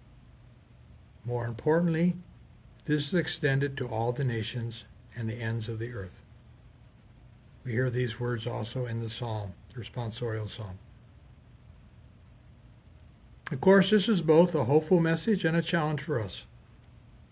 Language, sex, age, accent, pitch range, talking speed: English, male, 60-79, American, 115-160 Hz, 135 wpm